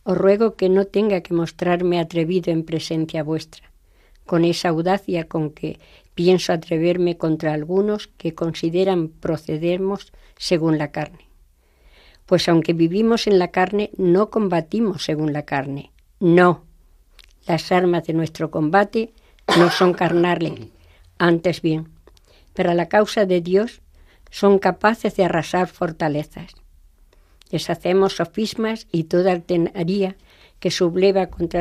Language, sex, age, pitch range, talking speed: Spanish, female, 60-79, 160-190 Hz, 125 wpm